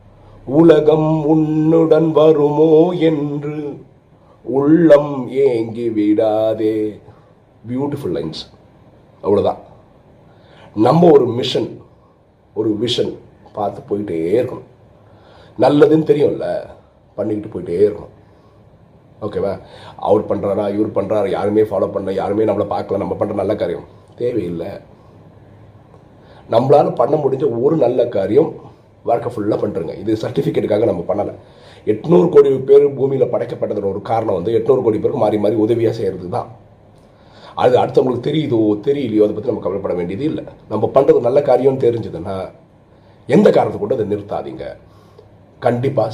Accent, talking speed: native, 100 wpm